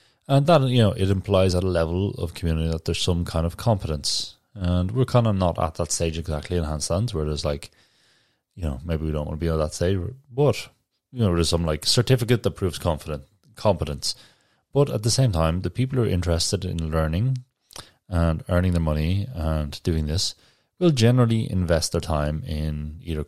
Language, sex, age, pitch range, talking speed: English, male, 30-49, 80-105 Hz, 200 wpm